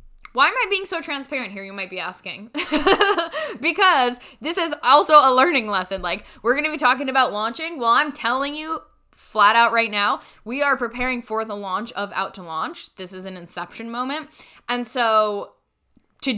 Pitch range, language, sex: 195-255 Hz, English, female